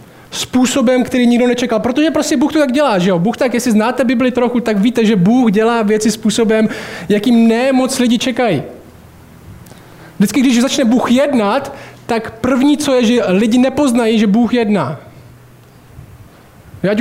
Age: 20-39